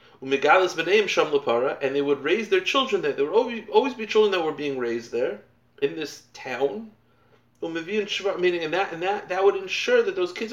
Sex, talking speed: male, 170 wpm